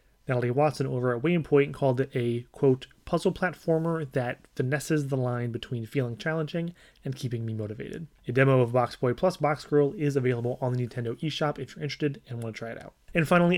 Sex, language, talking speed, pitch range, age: male, English, 205 wpm, 125-155 Hz, 30-49